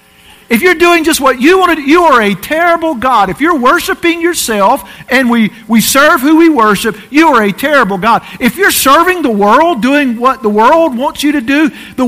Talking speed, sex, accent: 220 wpm, male, American